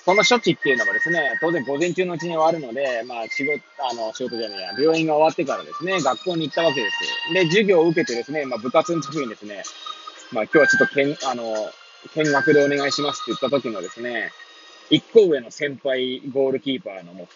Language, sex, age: Japanese, male, 20-39